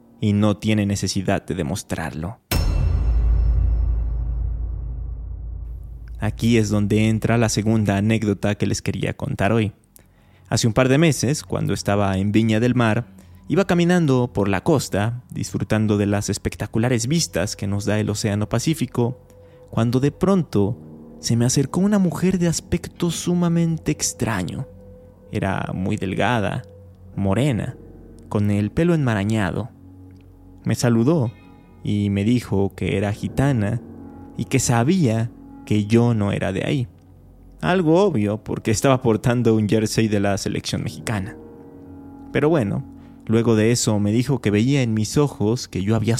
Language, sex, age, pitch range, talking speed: Spanish, male, 20-39, 95-120 Hz, 140 wpm